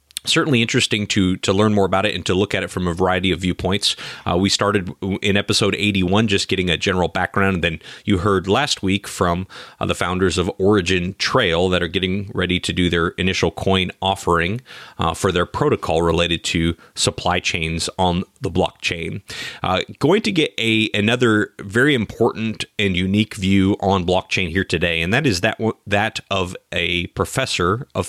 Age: 30-49